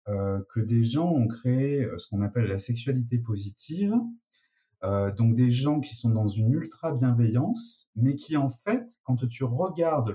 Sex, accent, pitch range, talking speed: male, French, 120-175 Hz, 175 wpm